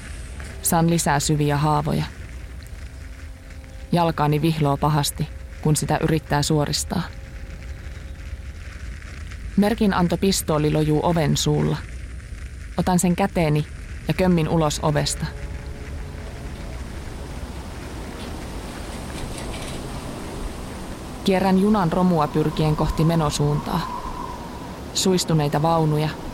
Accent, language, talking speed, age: native, Finnish, 70 wpm, 20-39